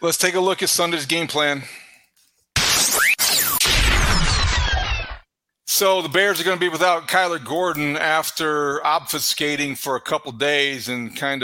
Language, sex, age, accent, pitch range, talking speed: English, male, 40-59, American, 125-150 Hz, 135 wpm